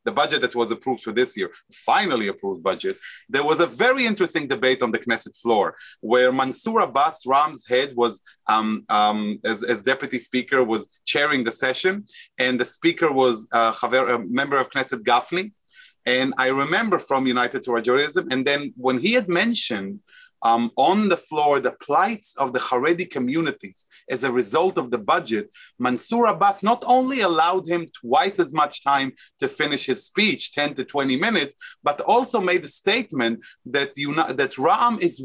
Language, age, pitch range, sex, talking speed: English, 30-49, 130-190 Hz, male, 175 wpm